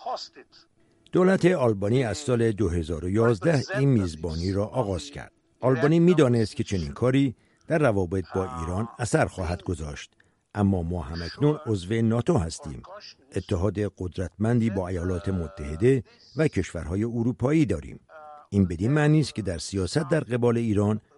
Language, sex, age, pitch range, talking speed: Persian, male, 60-79, 95-130 Hz, 130 wpm